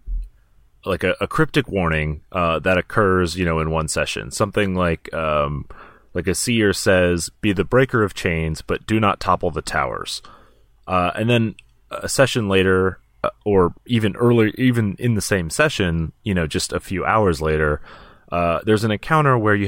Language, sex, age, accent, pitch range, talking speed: English, male, 30-49, American, 80-110 Hz, 175 wpm